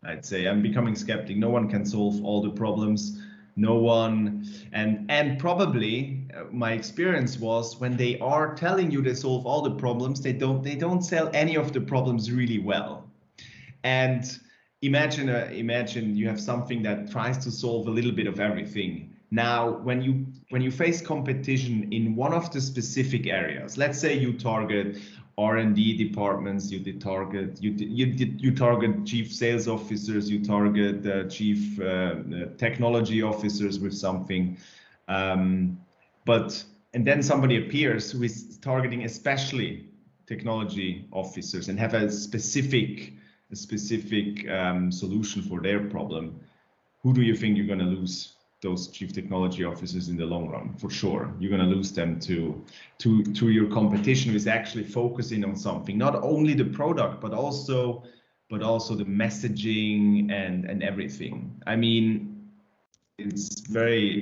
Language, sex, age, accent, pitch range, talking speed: English, male, 30-49, German, 100-125 Hz, 160 wpm